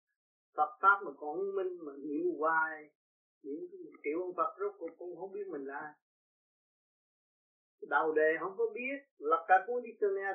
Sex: male